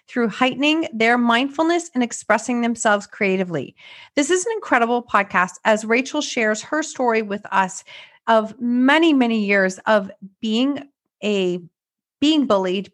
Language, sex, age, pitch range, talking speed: English, female, 30-49, 200-255 Hz, 135 wpm